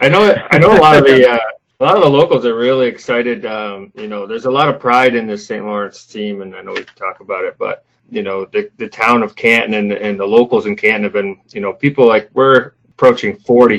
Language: English